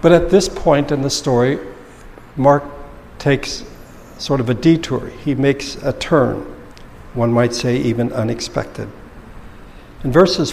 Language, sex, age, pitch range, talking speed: English, male, 60-79, 120-150 Hz, 135 wpm